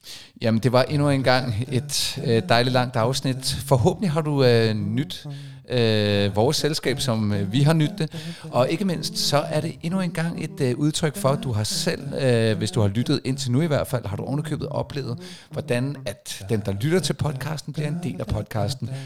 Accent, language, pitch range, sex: native, Danish, 120-150 Hz, male